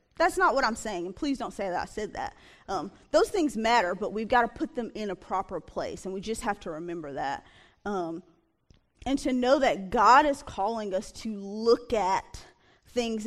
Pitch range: 190-230 Hz